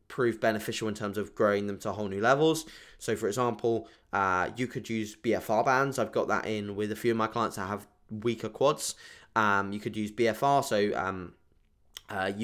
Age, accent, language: 10-29, British, English